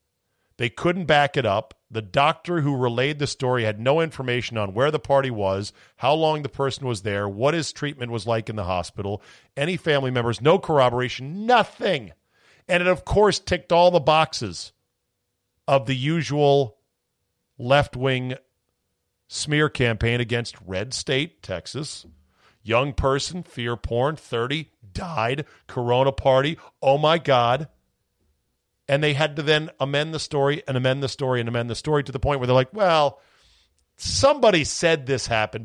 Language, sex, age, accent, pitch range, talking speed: English, male, 50-69, American, 110-155 Hz, 160 wpm